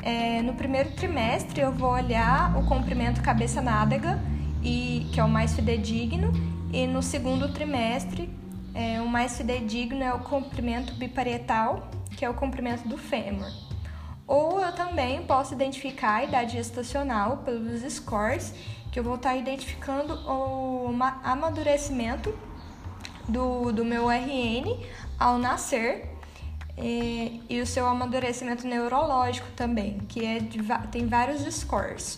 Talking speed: 125 wpm